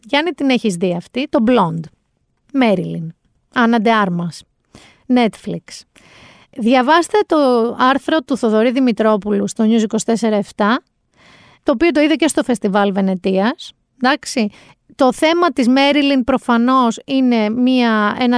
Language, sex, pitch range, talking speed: Greek, female, 215-290 Hz, 120 wpm